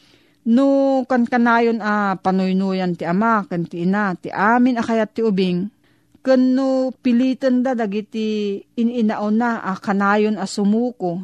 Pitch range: 185-235 Hz